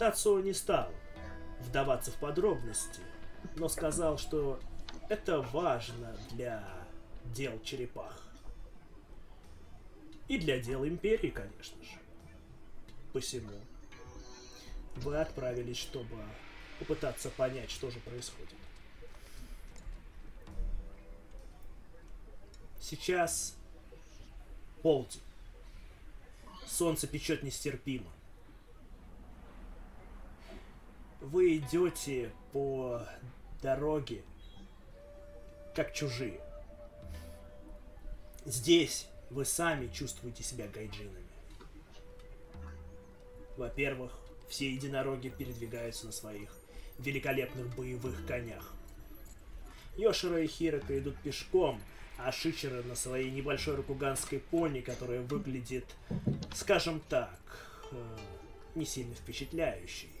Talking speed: 75 wpm